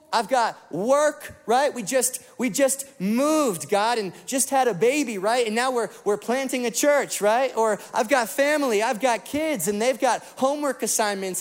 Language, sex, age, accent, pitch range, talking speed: English, male, 30-49, American, 190-250 Hz, 190 wpm